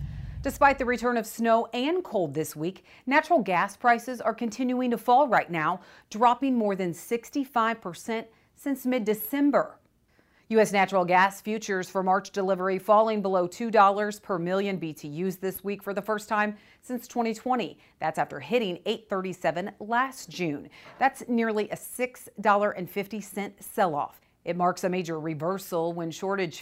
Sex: female